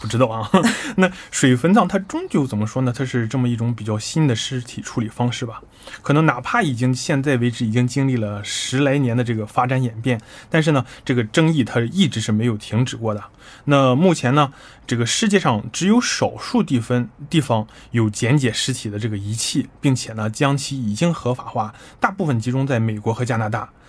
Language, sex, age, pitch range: Korean, male, 20-39, 115-145 Hz